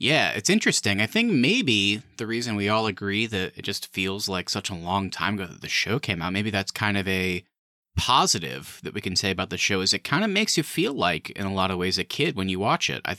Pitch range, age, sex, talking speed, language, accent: 95-125 Hz, 30-49, male, 270 wpm, English, American